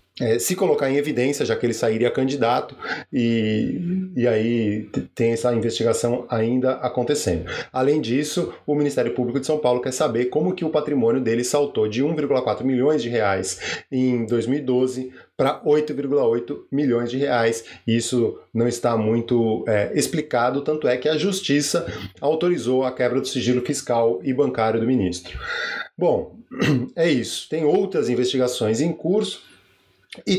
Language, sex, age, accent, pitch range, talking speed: Portuguese, male, 20-39, Brazilian, 120-150 Hz, 145 wpm